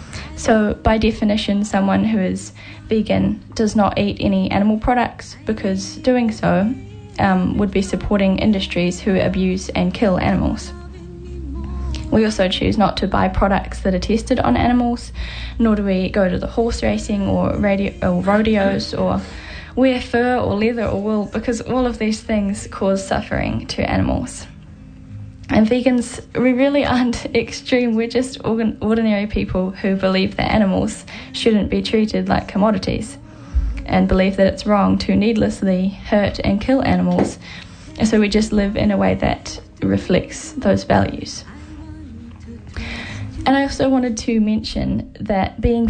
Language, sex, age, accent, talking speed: Filipino, female, 10-29, Australian, 150 wpm